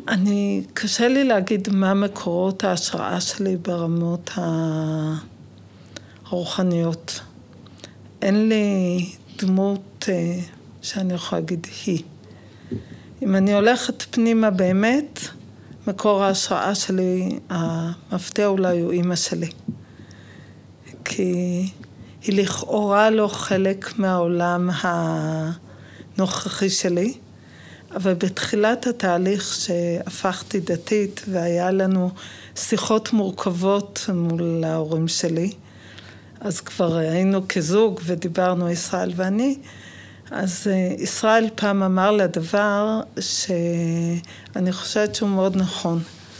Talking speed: 90 wpm